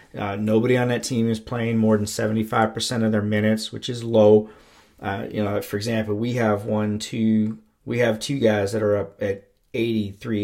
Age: 30-49